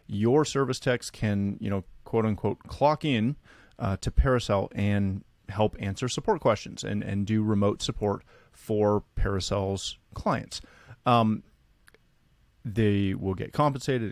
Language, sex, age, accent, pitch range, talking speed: English, male, 30-49, American, 100-130 Hz, 130 wpm